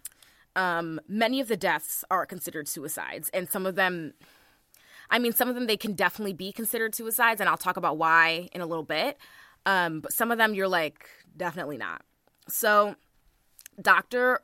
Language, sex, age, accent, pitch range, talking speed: English, female, 20-39, American, 165-220 Hz, 180 wpm